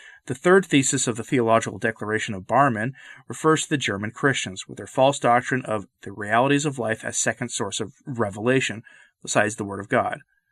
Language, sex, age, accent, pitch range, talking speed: English, male, 30-49, American, 110-140 Hz, 190 wpm